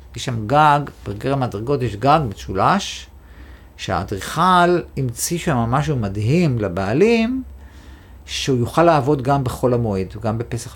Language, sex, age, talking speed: Hebrew, male, 50-69, 125 wpm